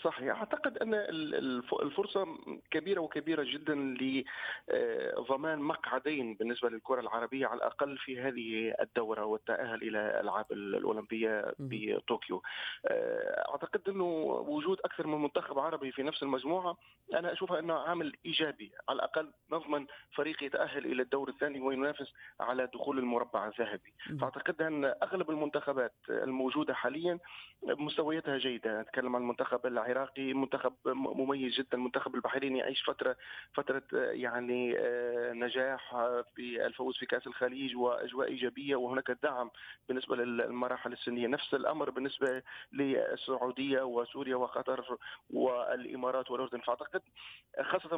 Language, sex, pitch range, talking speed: Arabic, male, 125-155 Hz, 120 wpm